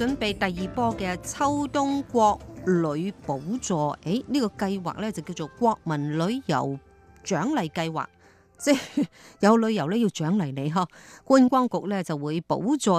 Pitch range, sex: 160-230 Hz, female